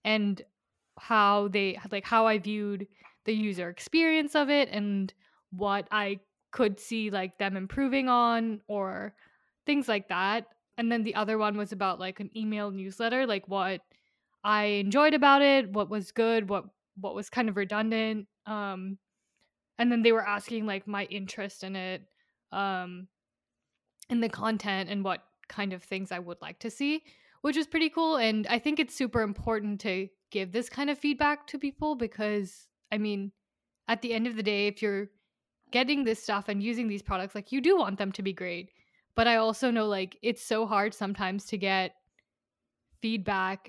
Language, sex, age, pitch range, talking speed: English, female, 10-29, 195-230 Hz, 180 wpm